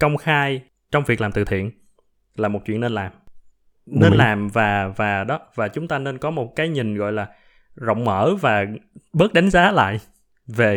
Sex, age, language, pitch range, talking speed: male, 20-39, Vietnamese, 105-145 Hz, 195 wpm